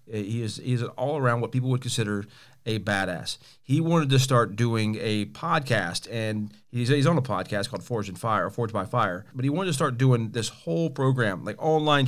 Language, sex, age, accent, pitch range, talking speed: English, male, 40-59, American, 110-135 Hz, 210 wpm